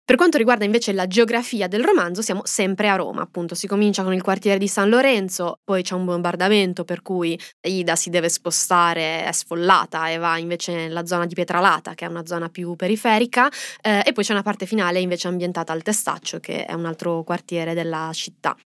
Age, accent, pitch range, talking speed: 20-39, native, 175-205 Hz, 205 wpm